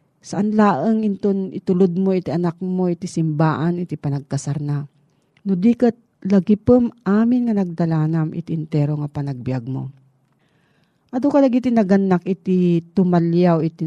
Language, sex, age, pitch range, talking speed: Filipino, female, 40-59, 155-200 Hz, 135 wpm